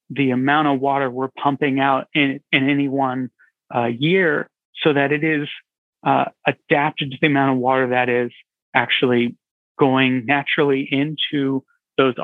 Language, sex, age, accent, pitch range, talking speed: English, male, 30-49, American, 130-150 Hz, 150 wpm